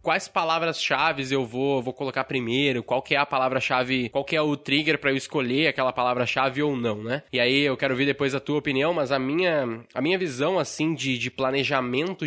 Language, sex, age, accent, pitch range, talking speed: Portuguese, male, 10-29, Brazilian, 130-170 Hz, 215 wpm